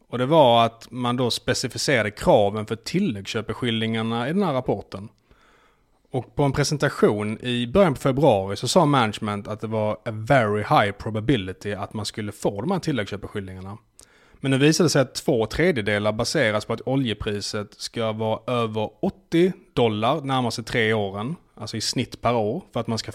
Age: 30-49